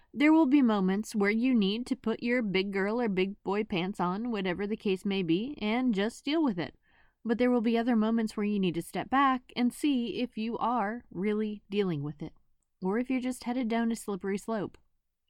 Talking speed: 225 wpm